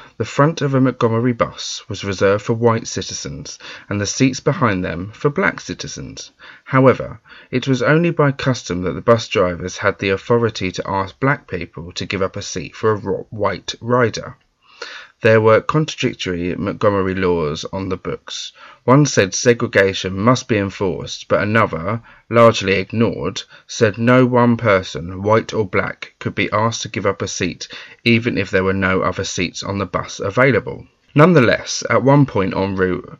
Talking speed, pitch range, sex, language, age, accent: 170 wpm, 95-125 Hz, male, English, 30-49, British